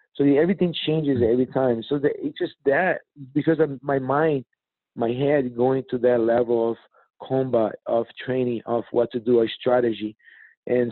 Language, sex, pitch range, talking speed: English, male, 115-130 Hz, 170 wpm